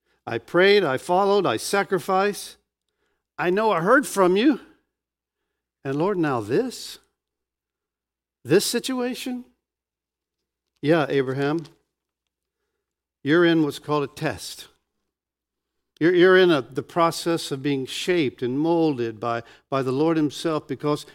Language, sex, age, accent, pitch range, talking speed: English, male, 60-79, American, 130-190 Hz, 120 wpm